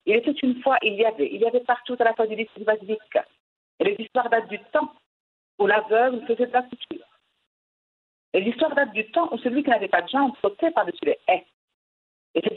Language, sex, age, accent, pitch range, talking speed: French, female, 50-69, French, 230-305 Hz, 225 wpm